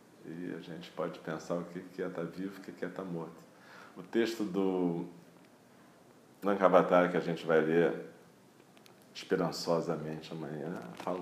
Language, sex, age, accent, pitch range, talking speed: Portuguese, male, 40-59, Brazilian, 80-90 Hz, 150 wpm